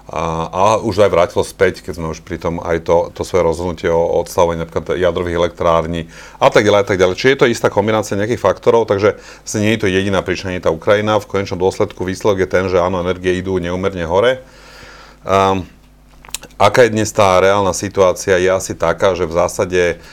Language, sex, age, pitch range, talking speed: Slovak, male, 30-49, 85-110 Hz, 205 wpm